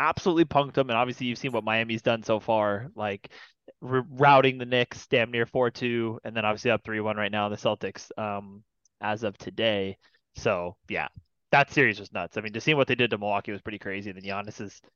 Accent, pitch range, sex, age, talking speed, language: American, 110-140 Hz, male, 20-39, 210 wpm, English